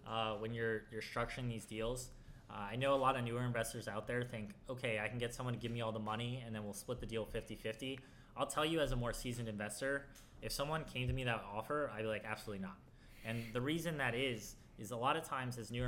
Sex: male